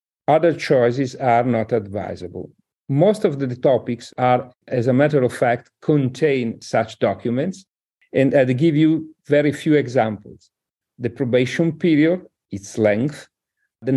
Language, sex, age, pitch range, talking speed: English, male, 50-69, 125-150 Hz, 140 wpm